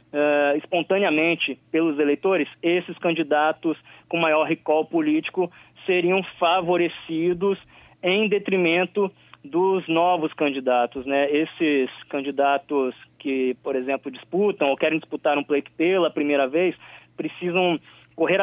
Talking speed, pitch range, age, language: 110 wpm, 150-190 Hz, 20-39, Portuguese